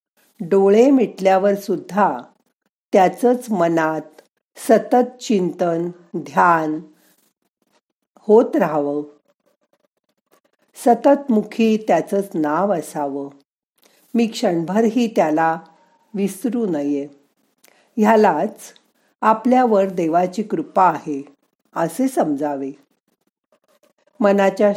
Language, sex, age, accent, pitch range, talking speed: Marathi, female, 50-69, native, 170-235 Hz, 70 wpm